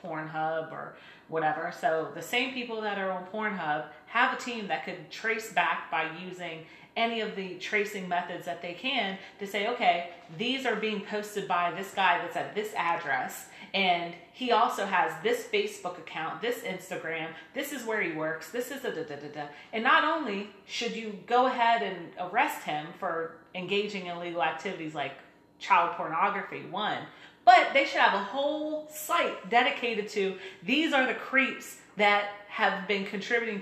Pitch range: 175-235 Hz